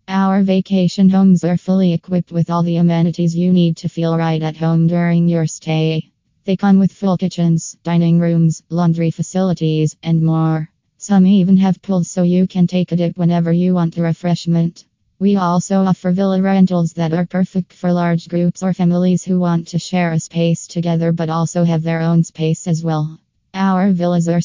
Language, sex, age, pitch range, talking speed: English, female, 20-39, 165-180 Hz, 190 wpm